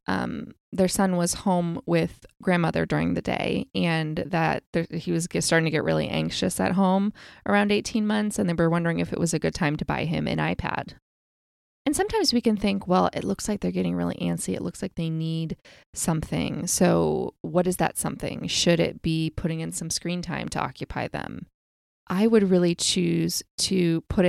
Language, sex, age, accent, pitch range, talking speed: English, female, 20-39, American, 160-195 Hz, 200 wpm